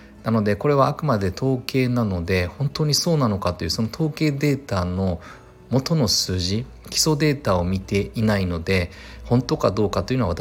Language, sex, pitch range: Japanese, male, 90-120 Hz